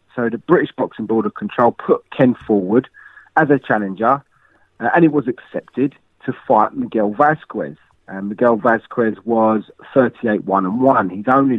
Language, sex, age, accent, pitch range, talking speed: English, male, 30-49, British, 110-145 Hz, 150 wpm